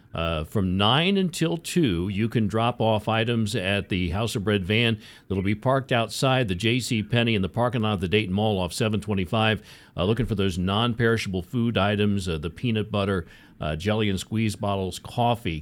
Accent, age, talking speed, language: American, 50-69, 195 wpm, English